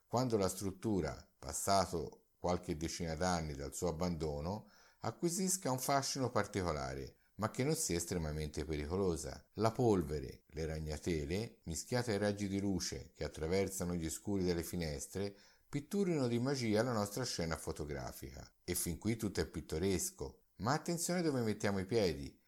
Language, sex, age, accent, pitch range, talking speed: Italian, male, 50-69, native, 80-105 Hz, 145 wpm